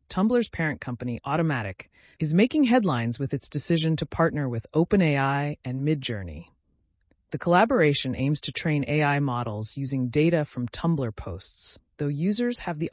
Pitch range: 120-160 Hz